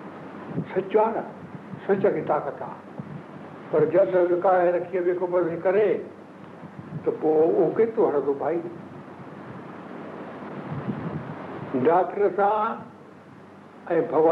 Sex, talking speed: male, 45 wpm